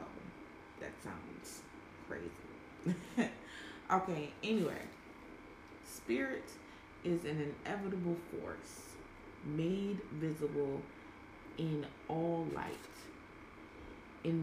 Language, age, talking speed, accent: English, 30-49, 60 wpm, American